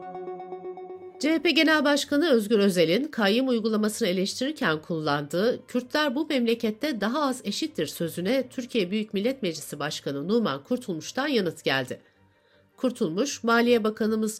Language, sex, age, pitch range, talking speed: Turkish, female, 60-79, 165-250 Hz, 115 wpm